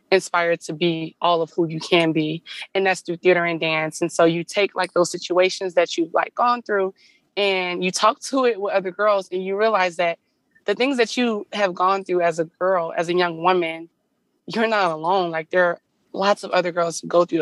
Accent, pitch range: American, 165-195 Hz